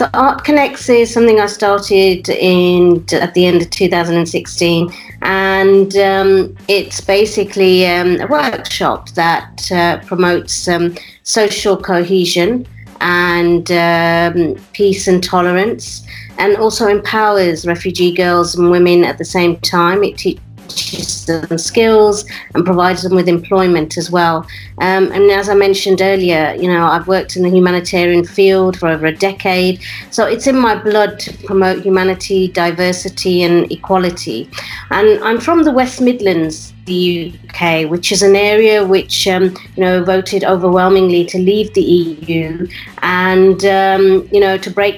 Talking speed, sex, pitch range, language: 145 wpm, female, 175-195 Hz, English